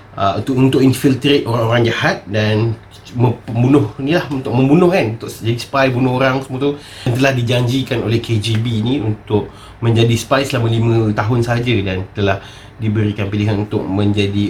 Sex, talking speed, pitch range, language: male, 160 wpm, 110-135 Hz, Malay